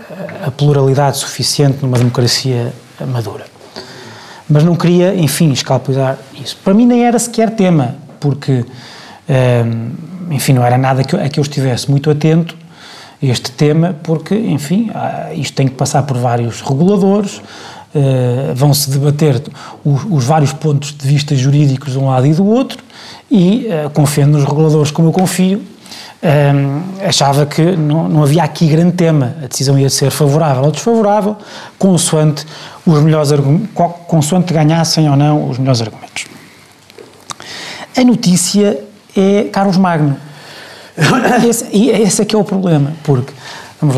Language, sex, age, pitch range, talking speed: Portuguese, male, 20-39, 135-175 Hz, 135 wpm